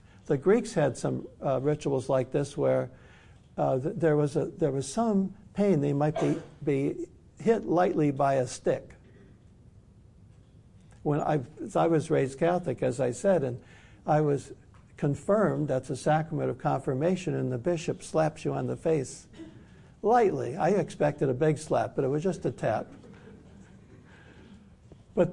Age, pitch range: 60-79, 125-175 Hz